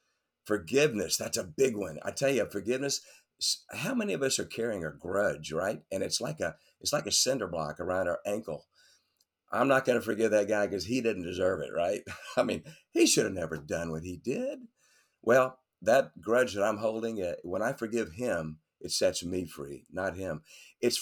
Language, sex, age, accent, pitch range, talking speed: English, male, 50-69, American, 90-125 Hz, 200 wpm